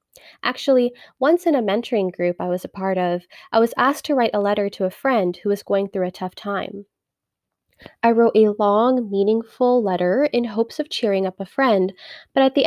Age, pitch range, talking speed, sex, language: 10-29, 195-265 Hz, 210 wpm, female, English